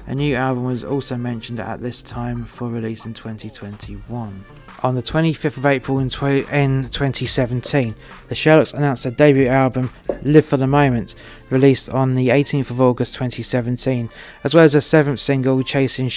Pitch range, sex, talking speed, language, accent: 120-135 Hz, male, 165 wpm, English, British